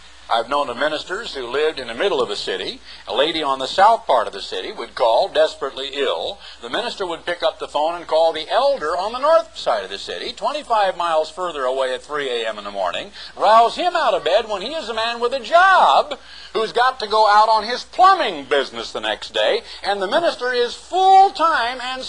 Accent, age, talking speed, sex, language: American, 60-79, 230 wpm, male, English